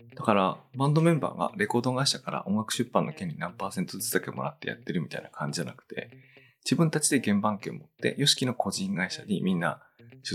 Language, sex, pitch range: Japanese, male, 115-140 Hz